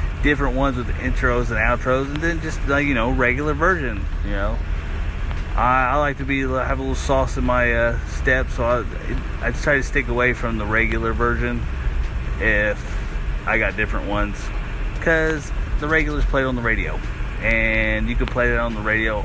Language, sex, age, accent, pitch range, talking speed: English, male, 30-49, American, 100-130 Hz, 190 wpm